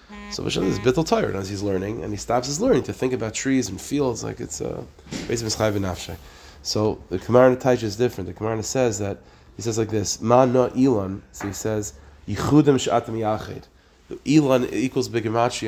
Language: English